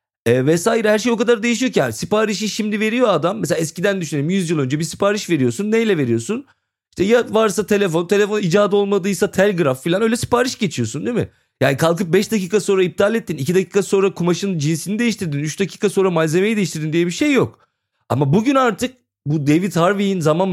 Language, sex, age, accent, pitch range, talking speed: Turkish, male, 40-59, native, 150-215 Hz, 195 wpm